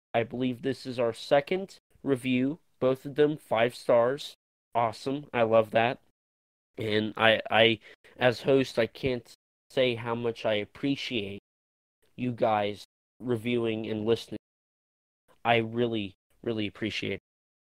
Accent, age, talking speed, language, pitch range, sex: American, 20-39, 125 wpm, English, 110-145 Hz, male